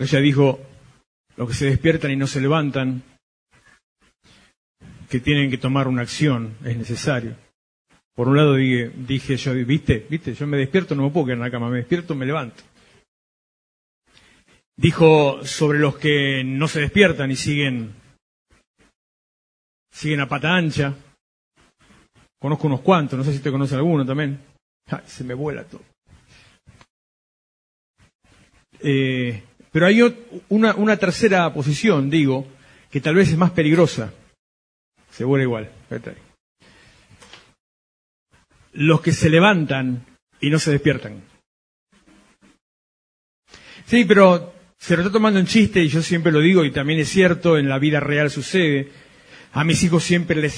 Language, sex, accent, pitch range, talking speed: Spanish, male, Argentinian, 135-160 Hz, 140 wpm